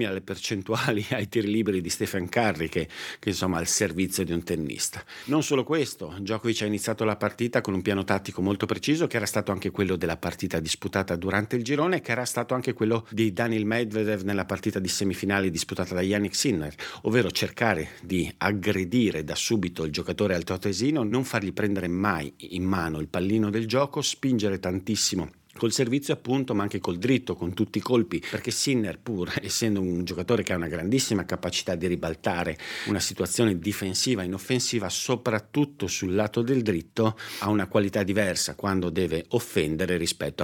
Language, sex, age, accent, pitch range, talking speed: Italian, male, 50-69, native, 90-115 Hz, 175 wpm